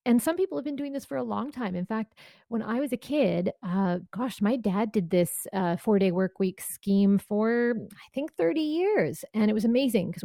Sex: female